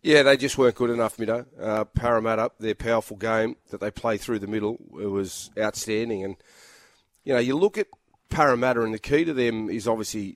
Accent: Australian